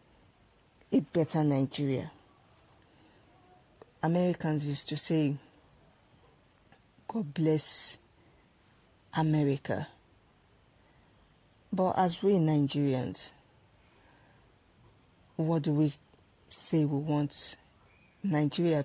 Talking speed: 65 wpm